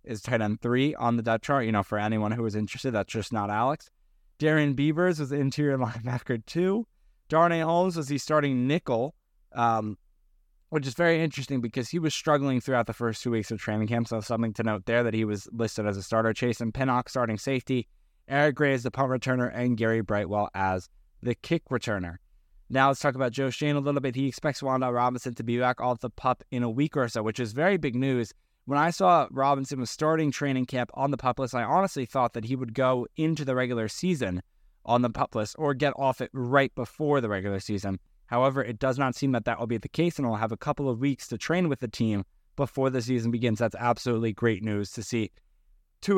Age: 20-39